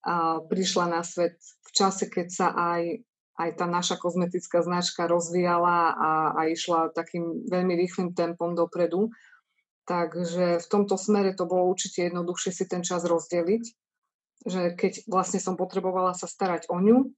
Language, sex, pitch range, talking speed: Slovak, female, 165-185 Hz, 150 wpm